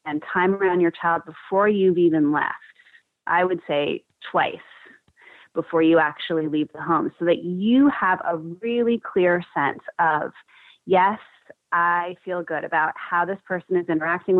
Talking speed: 160 wpm